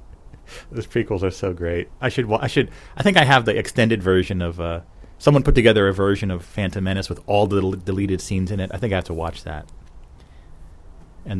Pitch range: 85-110 Hz